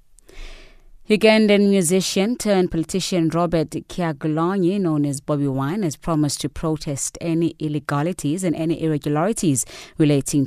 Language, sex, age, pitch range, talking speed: English, female, 30-49, 145-180 Hz, 115 wpm